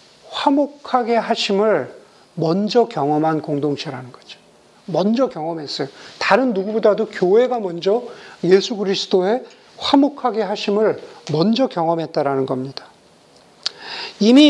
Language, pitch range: Korean, 195-255 Hz